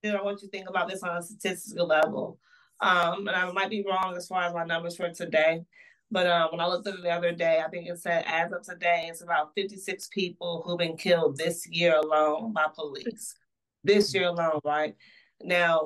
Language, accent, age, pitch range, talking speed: English, American, 30-49, 170-200 Hz, 225 wpm